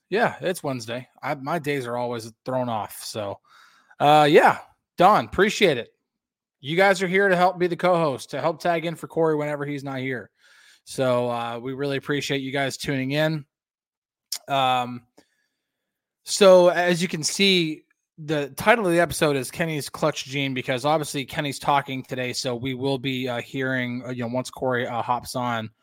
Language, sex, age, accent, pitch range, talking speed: English, male, 20-39, American, 120-150 Hz, 180 wpm